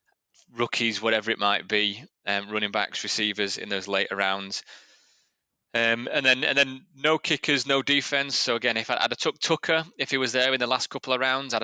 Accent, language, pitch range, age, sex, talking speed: British, English, 100-125 Hz, 20-39, male, 210 wpm